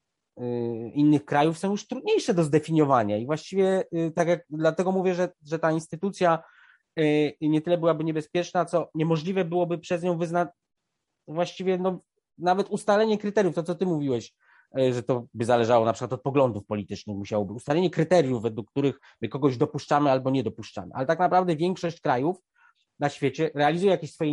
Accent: native